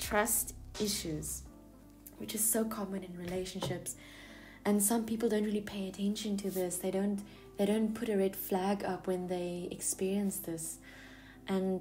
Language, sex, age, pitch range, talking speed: English, female, 20-39, 170-205 Hz, 160 wpm